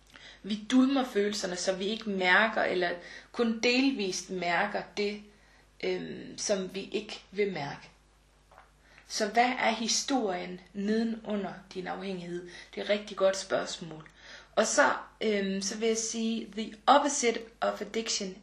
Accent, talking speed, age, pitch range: native, 140 wpm, 30-49, 190-225 Hz